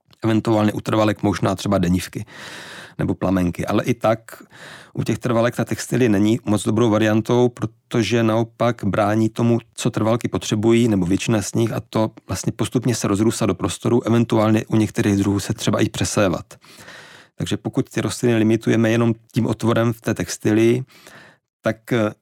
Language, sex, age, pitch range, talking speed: Czech, male, 40-59, 100-115 Hz, 160 wpm